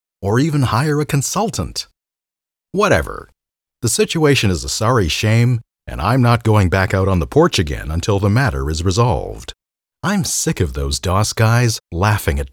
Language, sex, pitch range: English, male, 80-125 Hz